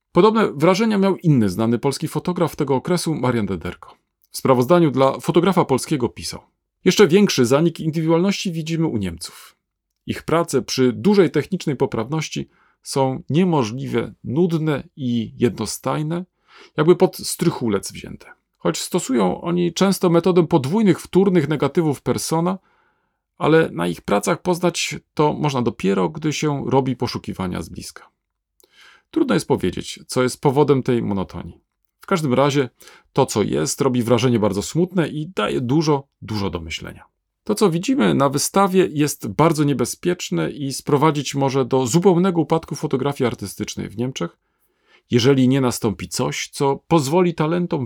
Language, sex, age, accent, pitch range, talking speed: Polish, male, 40-59, native, 125-175 Hz, 140 wpm